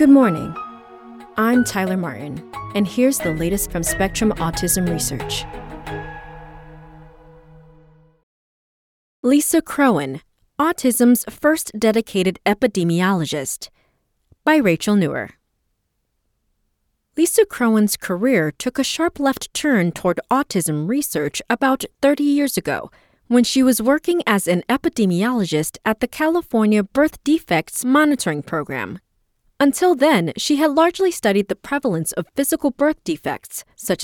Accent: American